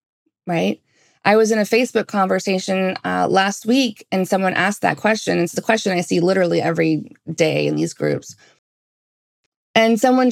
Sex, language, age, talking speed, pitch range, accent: female, English, 20-39, 165 wpm, 175-225 Hz, American